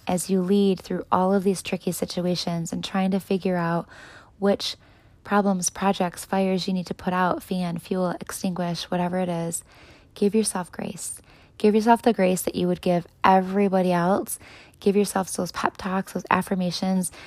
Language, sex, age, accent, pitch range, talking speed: English, female, 20-39, American, 180-200 Hz, 165 wpm